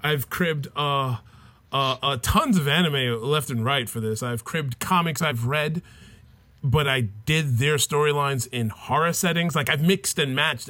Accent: American